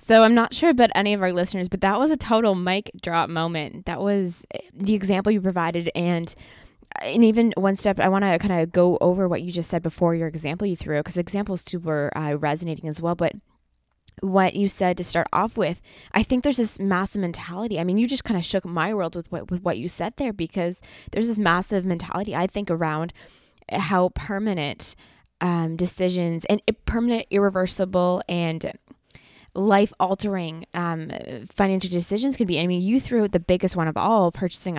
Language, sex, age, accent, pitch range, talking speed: English, female, 20-39, American, 175-205 Hz, 195 wpm